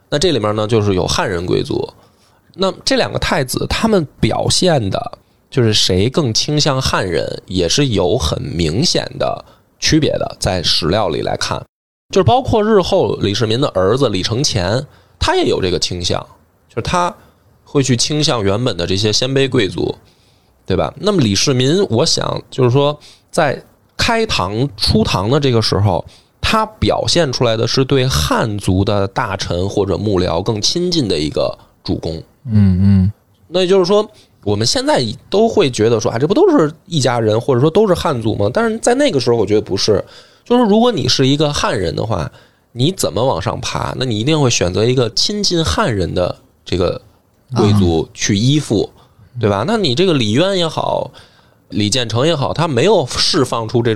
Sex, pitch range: male, 100-145 Hz